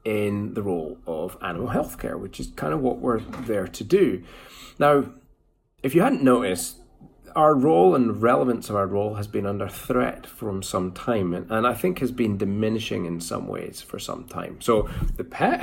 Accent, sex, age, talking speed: British, male, 30-49, 190 wpm